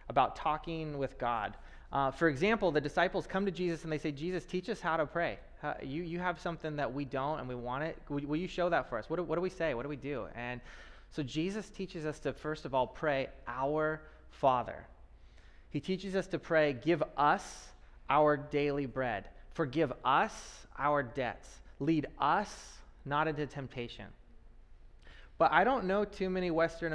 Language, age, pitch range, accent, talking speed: English, 20-39, 125-165 Hz, American, 195 wpm